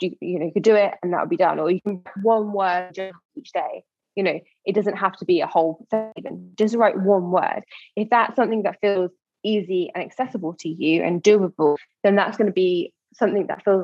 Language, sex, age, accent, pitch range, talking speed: English, female, 20-39, British, 180-215 Hz, 240 wpm